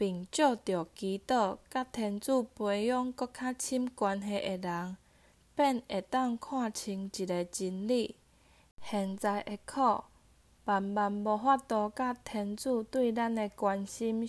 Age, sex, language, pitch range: 10-29, female, Chinese, 200-255 Hz